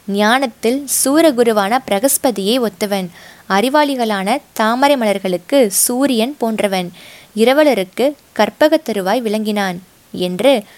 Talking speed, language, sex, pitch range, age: 80 wpm, Tamil, female, 200-260 Hz, 20-39